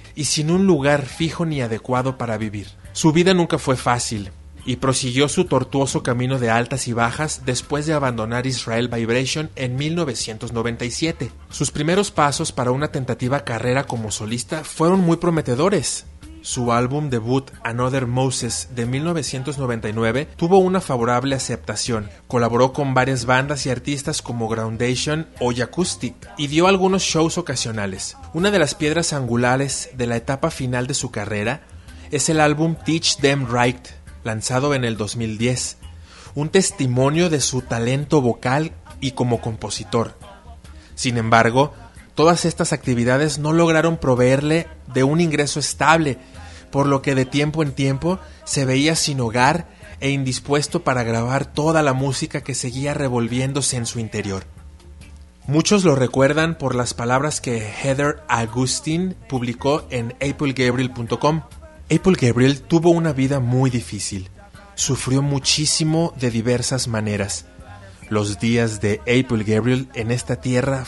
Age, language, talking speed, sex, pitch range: 30-49, Spanish, 140 wpm, male, 115-150 Hz